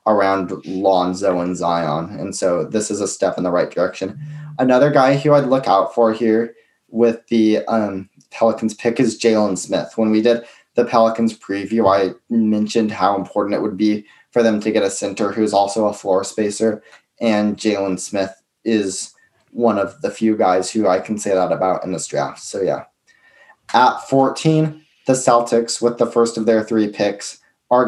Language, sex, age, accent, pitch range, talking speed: English, male, 20-39, American, 100-115 Hz, 185 wpm